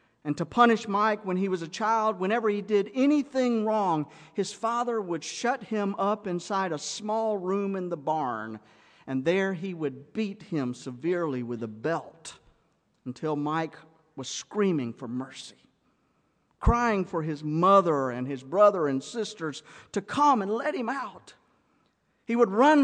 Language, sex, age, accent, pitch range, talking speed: English, male, 50-69, American, 150-220 Hz, 160 wpm